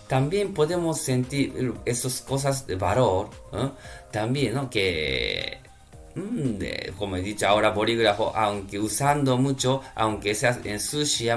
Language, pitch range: Japanese, 110-145 Hz